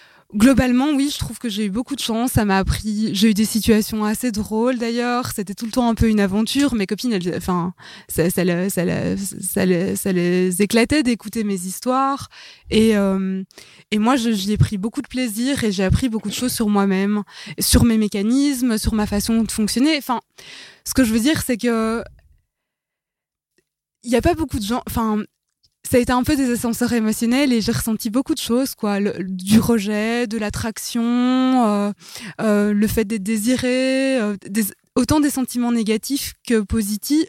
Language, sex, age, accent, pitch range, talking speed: French, female, 20-39, French, 205-250 Hz, 200 wpm